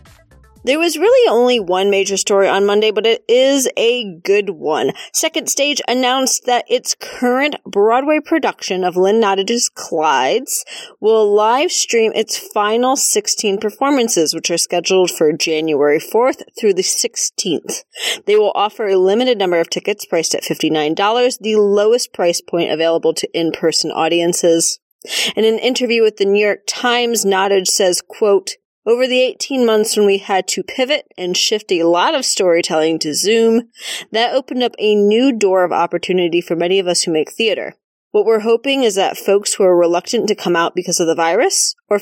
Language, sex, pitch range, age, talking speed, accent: English, female, 180-260 Hz, 30-49, 175 wpm, American